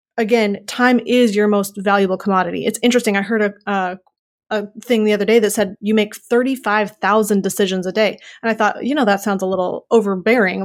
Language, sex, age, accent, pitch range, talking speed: English, female, 30-49, American, 205-240 Hz, 205 wpm